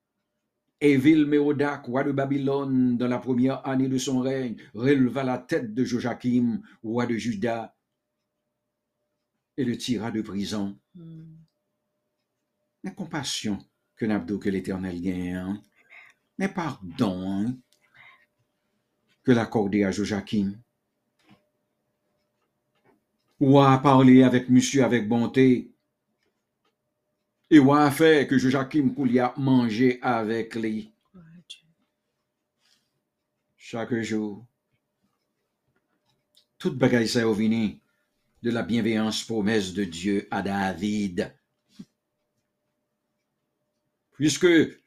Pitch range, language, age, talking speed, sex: 110-145 Hz, English, 60-79, 90 wpm, male